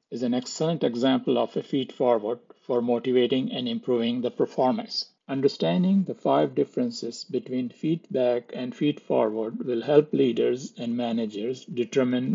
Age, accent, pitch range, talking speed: 50-69, Indian, 125-150 Hz, 130 wpm